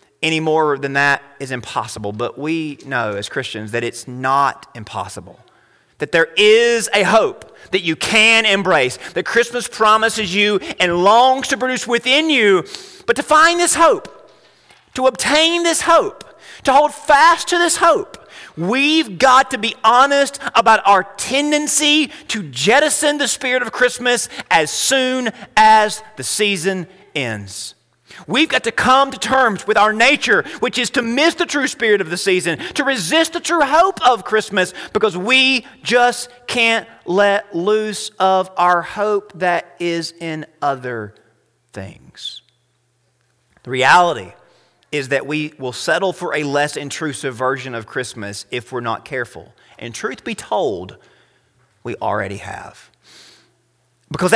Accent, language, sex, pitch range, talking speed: American, English, male, 155-260 Hz, 150 wpm